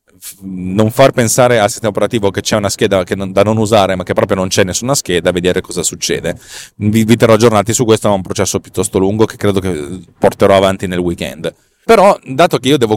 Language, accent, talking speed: Italian, native, 220 wpm